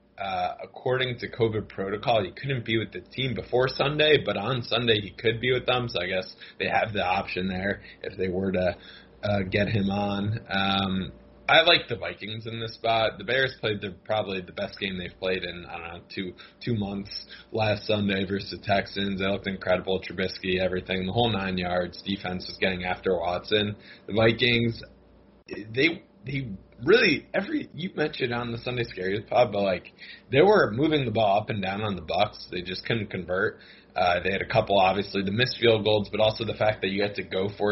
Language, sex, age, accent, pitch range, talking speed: English, male, 20-39, American, 95-115 Hz, 210 wpm